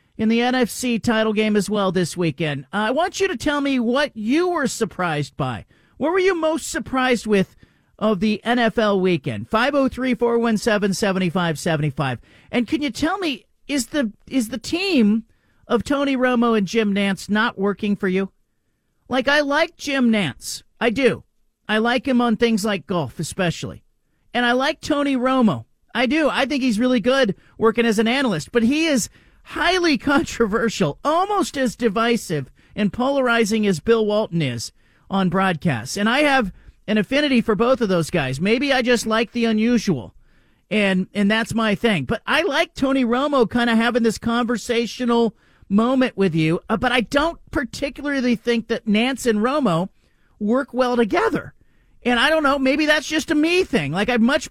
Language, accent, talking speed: English, American, 175 wpm